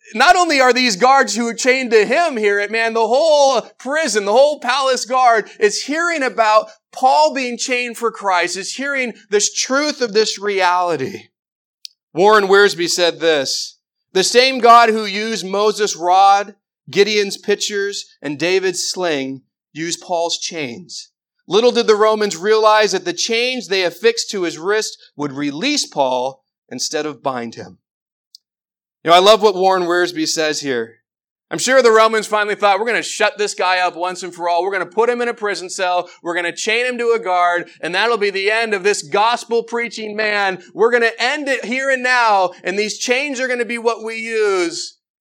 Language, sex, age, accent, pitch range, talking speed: English, male, 40-59, American, 180-245 Hz, 190 wpm